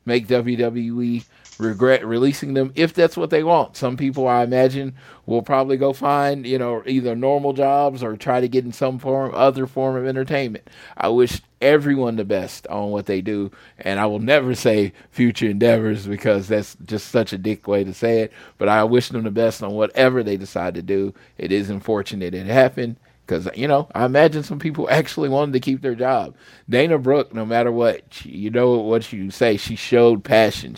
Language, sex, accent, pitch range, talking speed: English, male, American, 105-130 Hz, 200 wpm